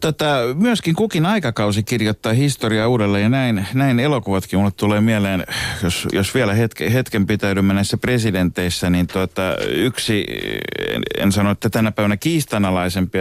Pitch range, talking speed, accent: 90-115 Hz, 145 wpm, native